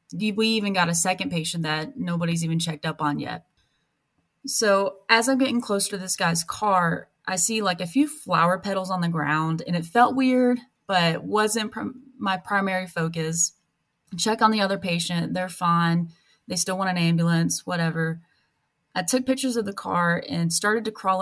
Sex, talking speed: female, 180 wpm